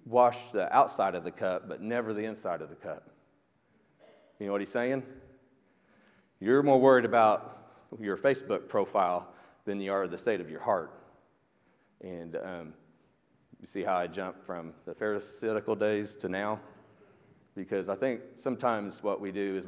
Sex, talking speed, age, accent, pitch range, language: male, 165 wpm, 40-59, American, 95-125 Hz, English